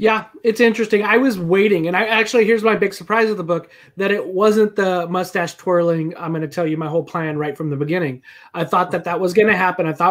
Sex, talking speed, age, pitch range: male, 260 wpm, 20-39, 175-215 Hz